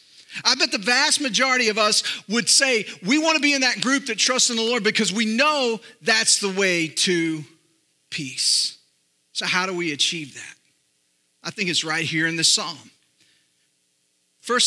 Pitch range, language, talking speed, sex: 155-225 Hz, English, 180 wpm, male